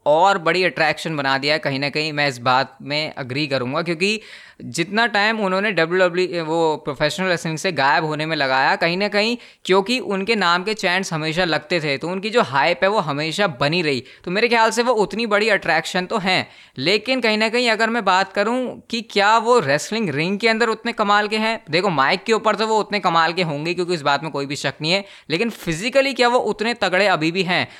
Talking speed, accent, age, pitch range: 225 wpm, native, 20-39, 160-215 Hz